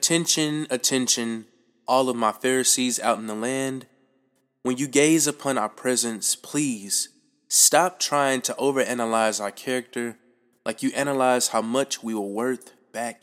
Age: 20-39